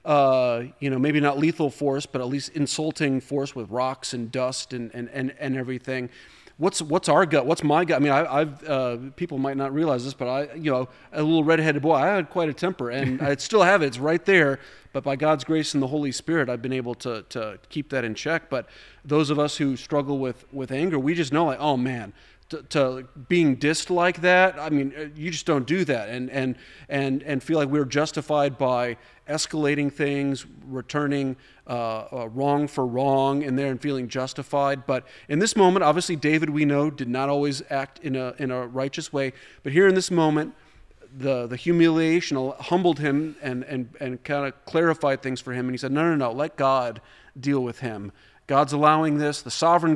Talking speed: 215 wpm